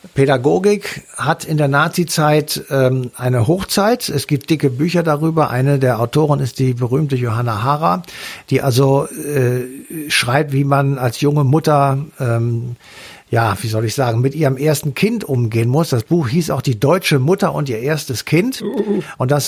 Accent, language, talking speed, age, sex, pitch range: German, German, 170 wpm, 60-79, male, 135-165 Hz